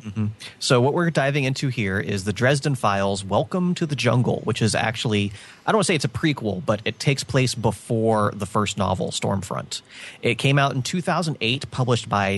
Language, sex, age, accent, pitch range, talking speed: English, male, 30-49, American, 105-135 Hz, 205 wpm